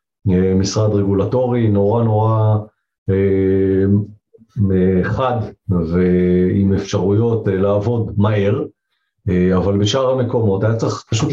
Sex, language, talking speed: male, Hebrew, 100 wpm